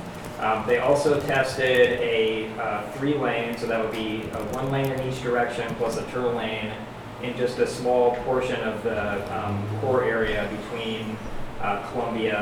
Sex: male